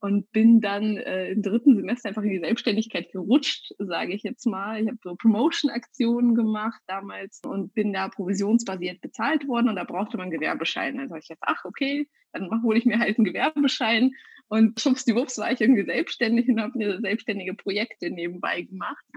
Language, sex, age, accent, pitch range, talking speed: German, female, 20-39, German, 195-245 Hz, 190 wpm